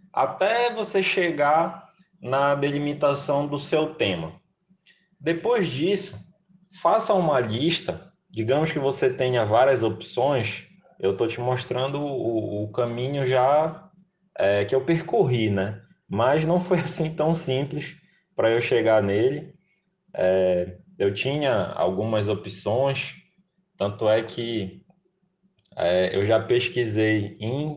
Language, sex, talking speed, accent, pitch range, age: Portuguese, male, 110 wpm, Brazilian, 120-185 Hz, 20-39